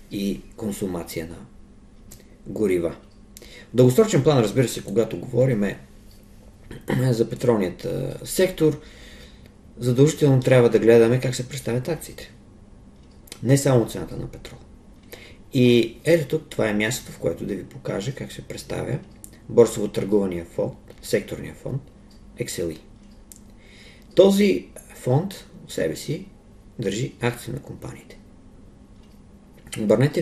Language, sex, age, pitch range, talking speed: Bulgarian, male, 50-69, 100-125 Hz, 110 wpm